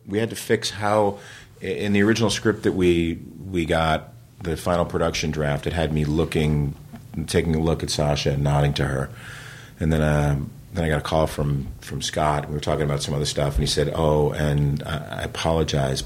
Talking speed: 210 wpm